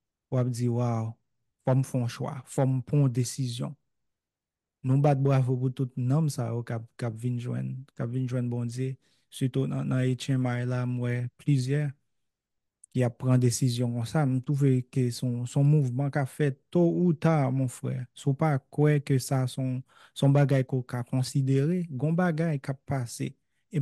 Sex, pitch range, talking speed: male, 130-150 Hz, 140 wpm